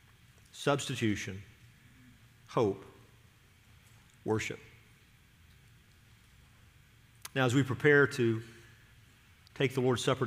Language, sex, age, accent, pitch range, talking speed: English, male, 50-69, American, 115-135 Hz, 70 wpm